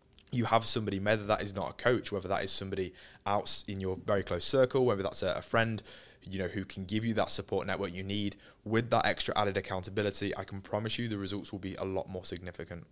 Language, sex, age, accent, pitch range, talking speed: English, male, 20-39, British, 95-105 Hz, 240 wpm